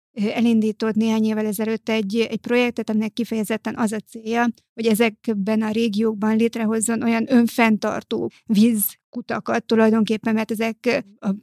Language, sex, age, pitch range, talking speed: Hungarian, female, 30-49, 215-230 Hz, 125 wpm